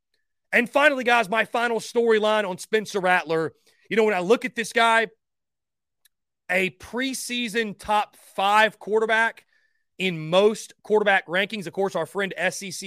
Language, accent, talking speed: English, American, 145 wpm